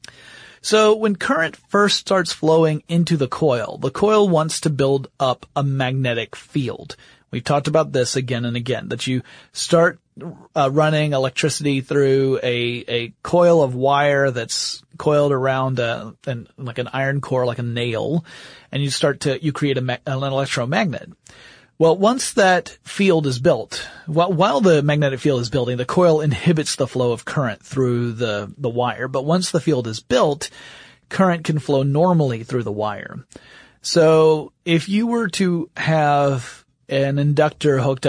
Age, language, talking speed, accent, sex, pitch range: 30-49, English, 165 wpm, American, male, 130-160 Hz